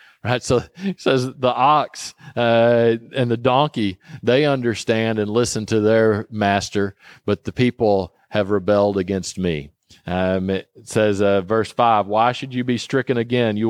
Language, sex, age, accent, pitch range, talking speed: English, male, 40-59, American, 100-125 Hz, 160 wpm